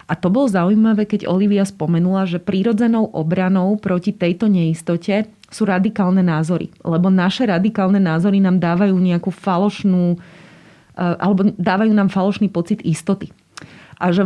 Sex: female